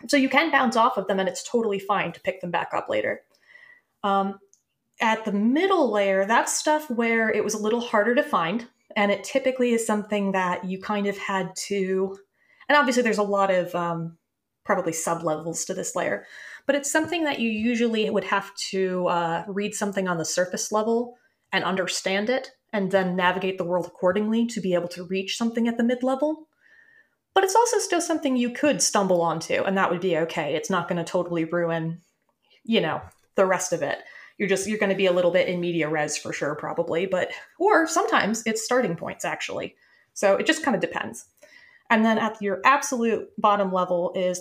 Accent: American